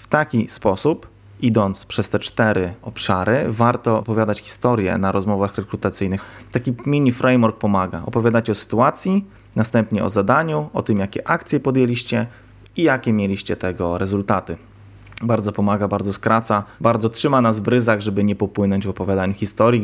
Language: Polish